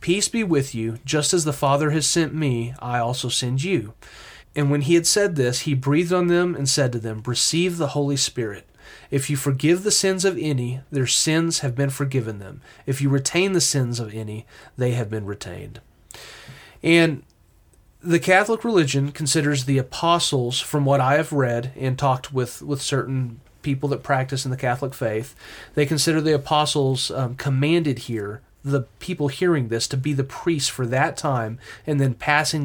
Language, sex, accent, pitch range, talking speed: English, male, American, 120-155 Hz, 185 wpm